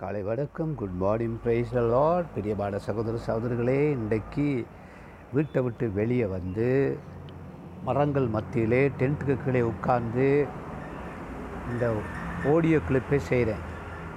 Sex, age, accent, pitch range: male, 60-79, native, 100-130 Hz